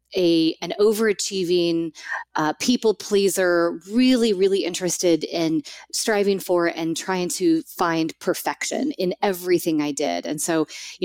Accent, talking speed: American, 130 wpm